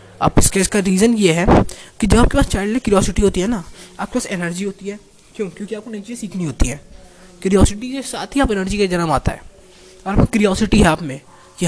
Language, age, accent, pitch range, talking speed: Hindi, 20-39, native, 170-225 Hz, 225 wpm